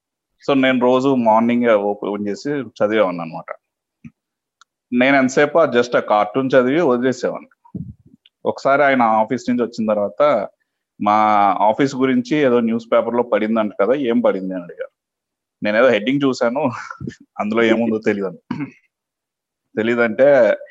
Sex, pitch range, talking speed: male, 105-135 Hz, 125 wpm